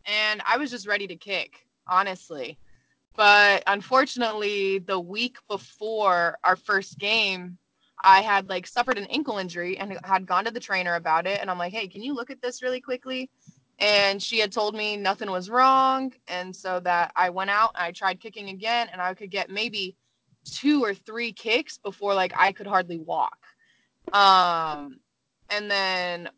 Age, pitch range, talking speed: 20-39, 180-215 Hz, 175 wpm